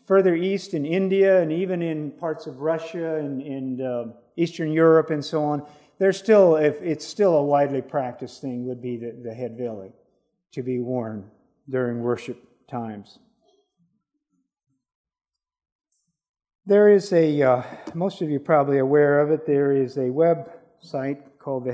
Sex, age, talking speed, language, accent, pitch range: male, 50-69, 155 wpm, English, American, 135-170 Hz